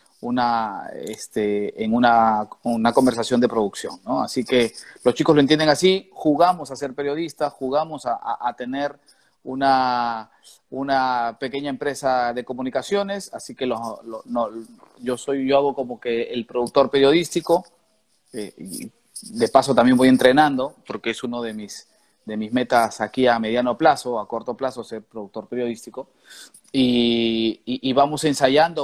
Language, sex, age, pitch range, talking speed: Spanish, male, 30-49, 120-145 Hz, 155 wpm